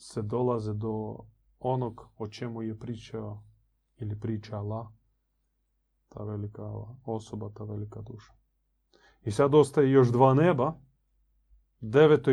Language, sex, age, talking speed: Croatian, male, 30-49, 110 wpm